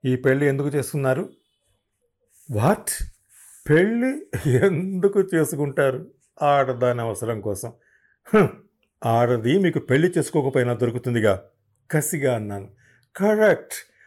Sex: male